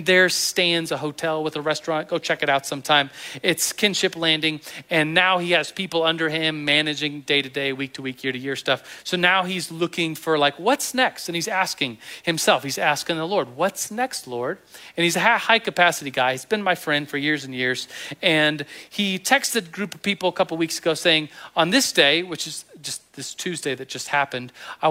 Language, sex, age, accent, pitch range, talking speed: English, male, 40-59, American, 145-190 Hz, 215 wpm